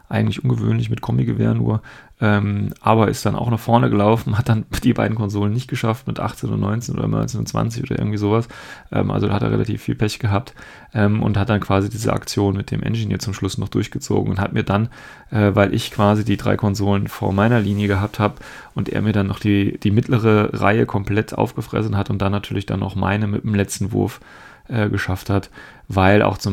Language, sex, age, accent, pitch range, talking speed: German, male, 30-49, German, 95-110 Hz, 215 wpm